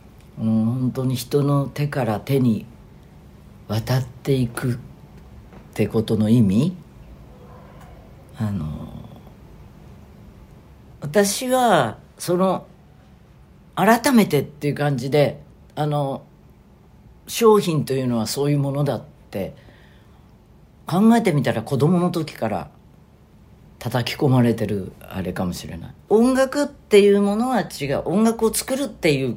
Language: Japanese